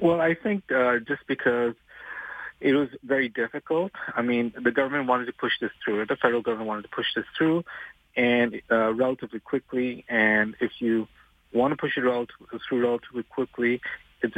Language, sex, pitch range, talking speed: English, male, 115-130 Hz, 180 wpm